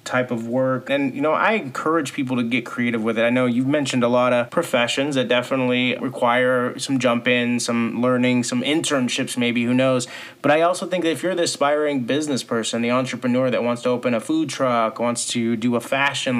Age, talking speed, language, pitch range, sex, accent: 30-49, 220 wpm, English, 120-135 Hz, male, American